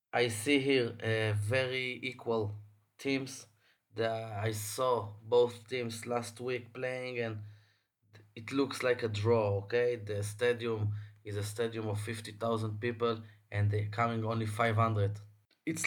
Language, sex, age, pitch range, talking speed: English, male, 20-39, 105-120 Hz, 135 wpm